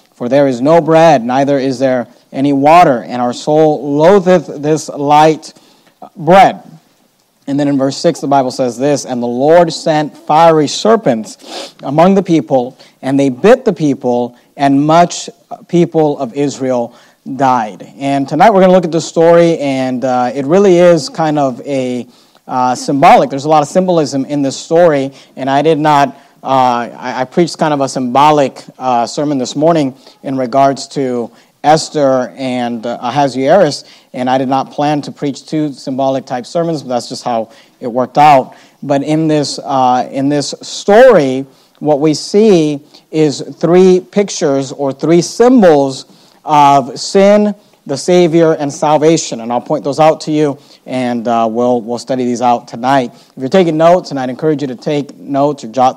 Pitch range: 130-160 Hz